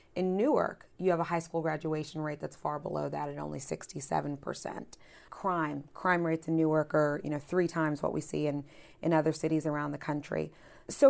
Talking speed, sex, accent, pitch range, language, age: 200 wpm, female, American, 160-185 Hz, English, 30-49